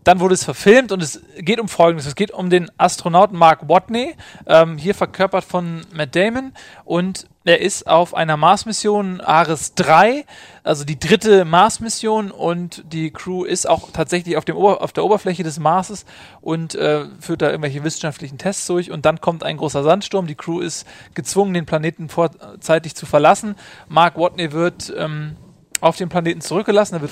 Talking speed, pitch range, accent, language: 180 wpm, 160-190 Hz, German, German